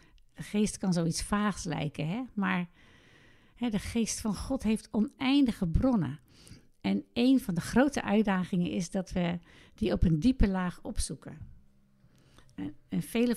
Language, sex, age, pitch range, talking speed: Dutch, female, 60-79, 175-230 Hz, 145 wpm